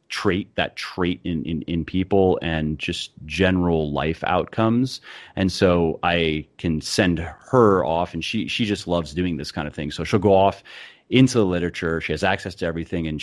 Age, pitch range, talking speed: 30-49, 80-95 Hz, 190 wpm